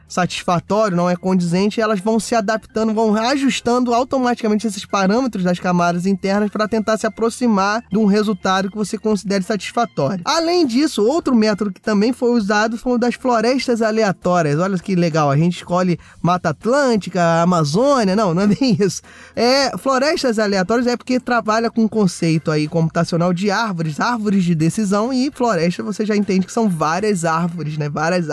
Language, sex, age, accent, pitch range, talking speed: Portuguese, male, 20-39, Brazilian, 185-245 Hz, 170 wpm